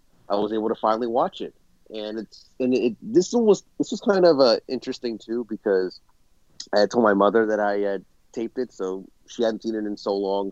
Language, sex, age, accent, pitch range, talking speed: English, male, 30-49, American, 95-120 Hz, 220 wpm